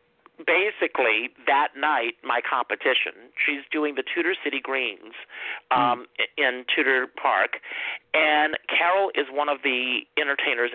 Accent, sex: American, male